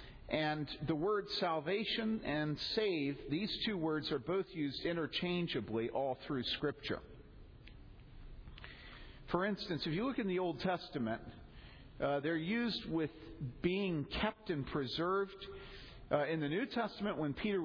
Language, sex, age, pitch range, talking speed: English, male, 50-69, 140-185 Hz, 135 wpm